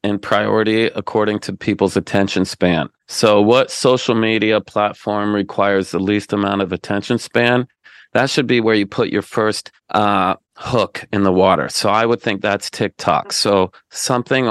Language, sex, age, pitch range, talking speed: English, male, 40-59, 100-115 Hz, 165 wpm